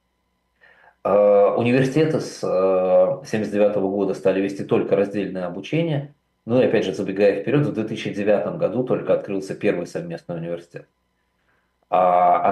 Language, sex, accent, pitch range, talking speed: Russian, male, native, 95-135 Hz, 115 wpm